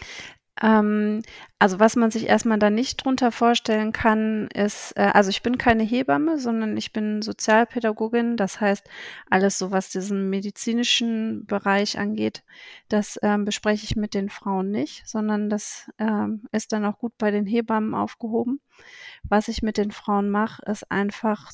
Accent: German